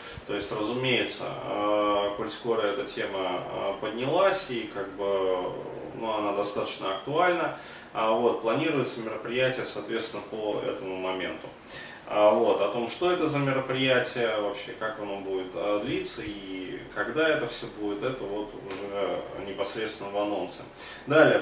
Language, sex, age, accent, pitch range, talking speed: Russian, male, 20-39, native, 105-130 Hz, 135 wpm